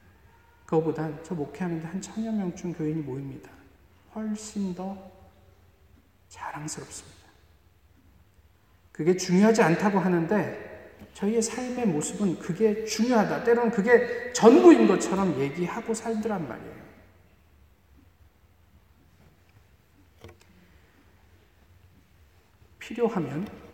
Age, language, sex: 40-59, Korean, male